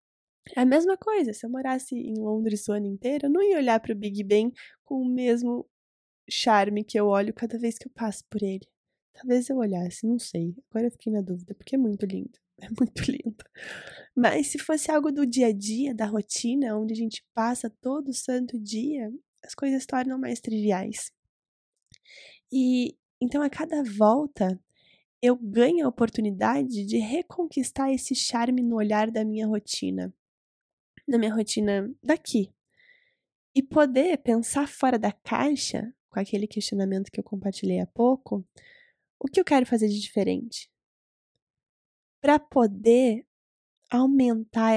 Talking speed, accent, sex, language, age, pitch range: 160 wpm, Brazilian, female, Portuguese, 10-29, 205-265 Hz